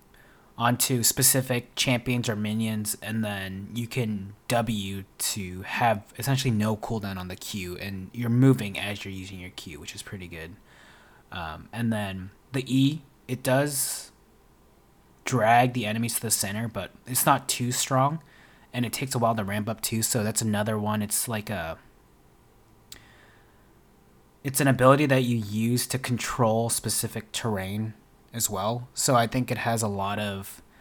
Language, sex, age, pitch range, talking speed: English, male, 20-39, 100-120 Hz, 165 wpm